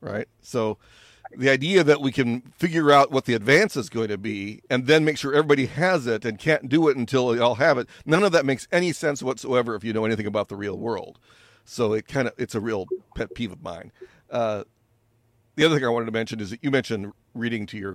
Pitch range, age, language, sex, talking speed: 105-125 Hz, 40-59, English, male, 245 wpm